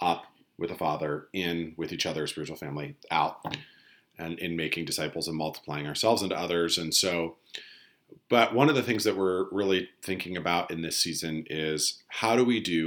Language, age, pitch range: English, 40-59, 80-100 Hz